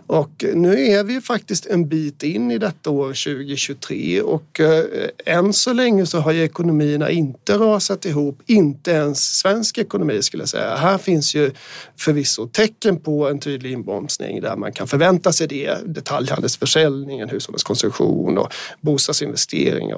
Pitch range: 145-190 Hz